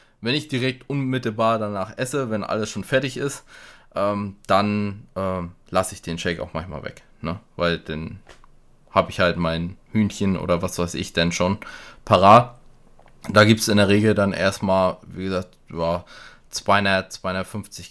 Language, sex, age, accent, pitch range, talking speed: English, male, 20-39, German, 90-115 Hz, 165 wpm